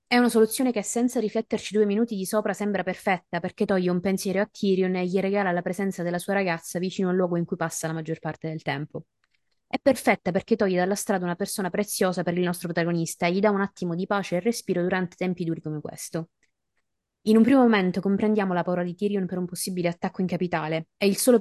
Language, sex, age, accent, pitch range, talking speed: Italian, female, 20-39, native, 175-210 Hz, 230 wpm